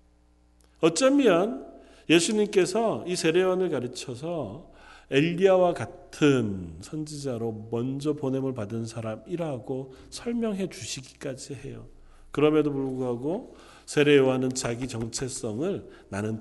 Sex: male